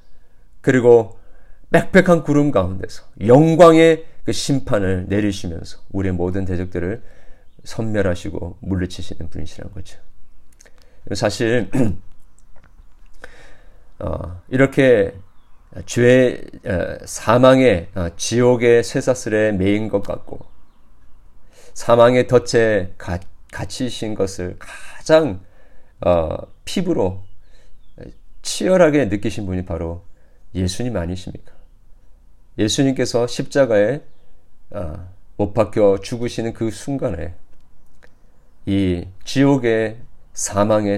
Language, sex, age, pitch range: Korean, male, 40-59, 90-120 Hz